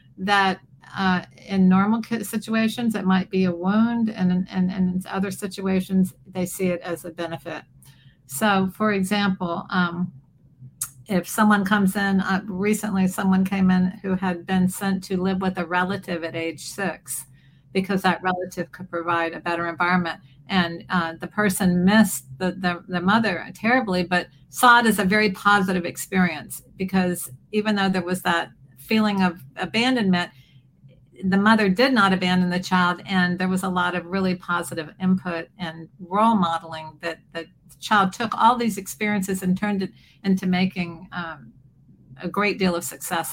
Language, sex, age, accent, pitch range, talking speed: English, female, 50-69, American, 170-195 Hz, 165 wpm